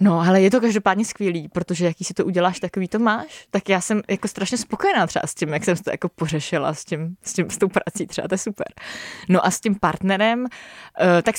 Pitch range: 170-220 Hz